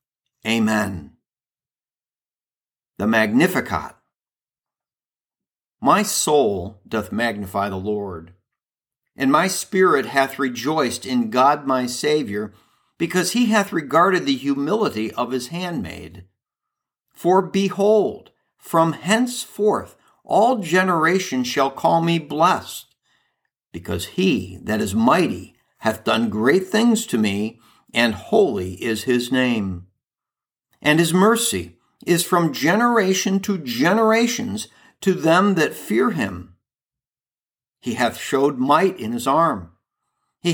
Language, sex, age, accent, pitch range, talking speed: English, male, 50-69, American, 125-200 Hz, 110 wpm